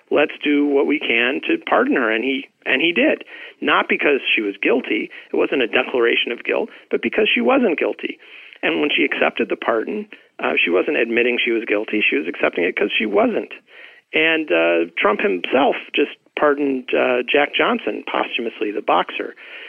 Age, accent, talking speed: 40-59, American, 185 wpm